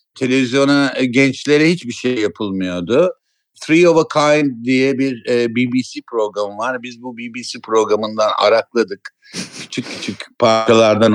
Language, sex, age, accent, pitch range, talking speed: Turkish, male, 60-79, native, 105-150 Hz, 120 wpm